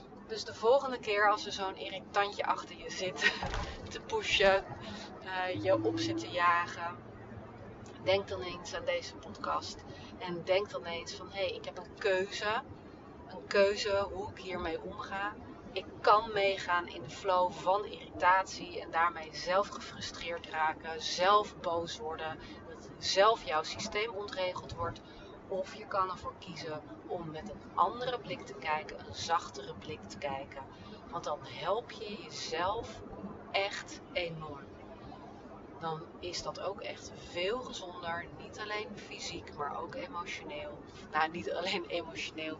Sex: female